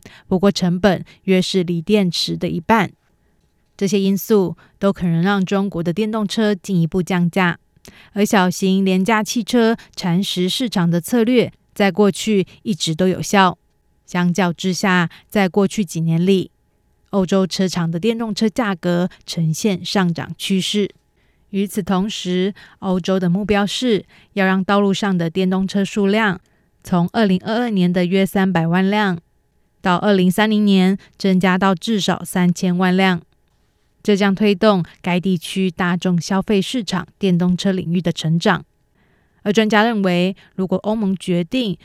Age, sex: 20-39, female